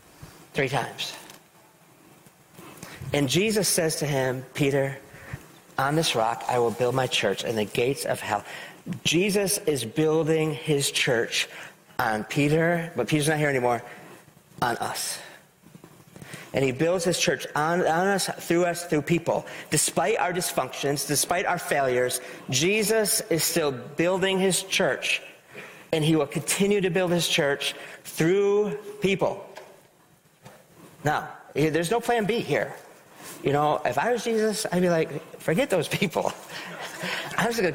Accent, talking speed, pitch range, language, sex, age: American, 145 wpm, 140-175 Hz, English, male, 40-59